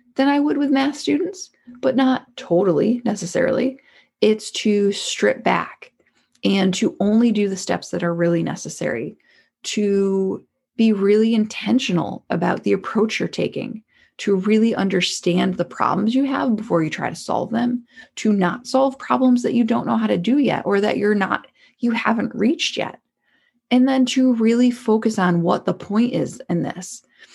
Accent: American